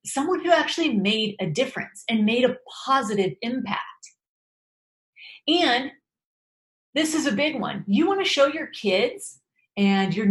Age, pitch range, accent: 30-49, 210-325 Hz, American